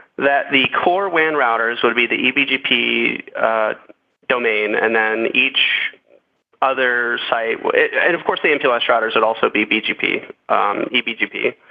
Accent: American